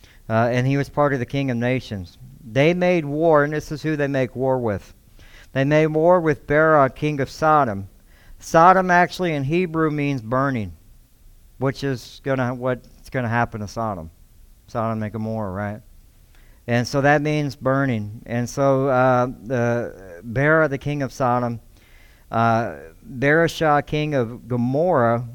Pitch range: 115-150 Hz